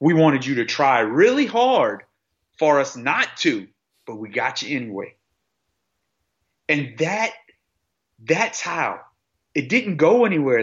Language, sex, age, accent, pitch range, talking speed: English, male, 30-49, American, 125-160 Hz, 130 wpm